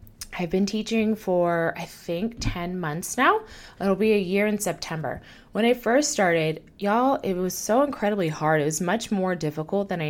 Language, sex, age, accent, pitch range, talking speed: English, female, 20-39, American, 175-230 Hz, 190 wpm